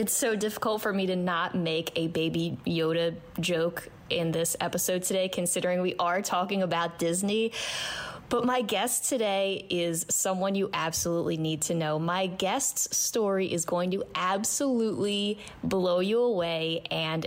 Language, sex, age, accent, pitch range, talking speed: English, female, 20-39, American, 170-215 Hz, 155 wpm